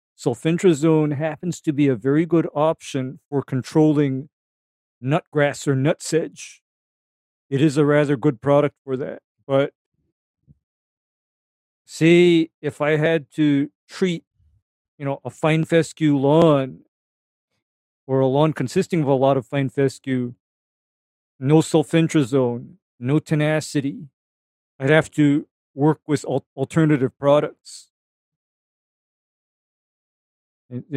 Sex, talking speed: male, 110 wpm